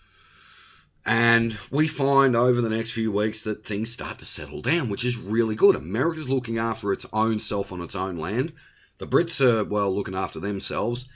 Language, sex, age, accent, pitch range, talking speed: English, male, 40-59, Australian, 90-120 Hz, 190 wpm